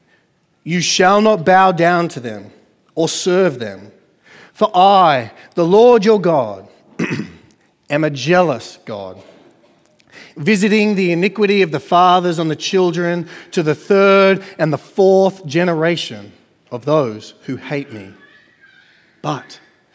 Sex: male